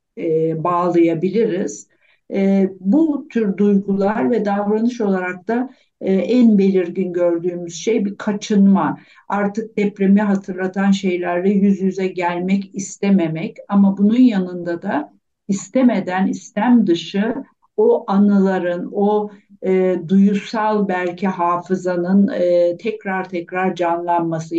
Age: 60-79